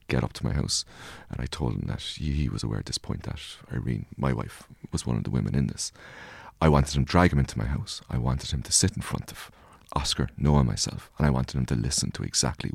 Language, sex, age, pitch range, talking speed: English, male, 30-49, 65-90 Hz, 260 wpm